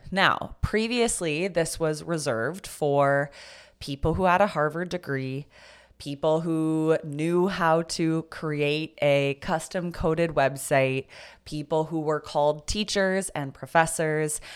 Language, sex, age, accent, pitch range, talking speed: English, female, 20-39, American, 140-185 Hz, 120 wpm